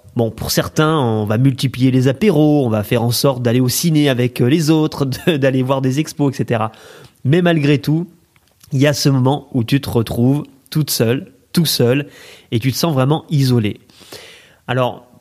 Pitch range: 115-145 Hz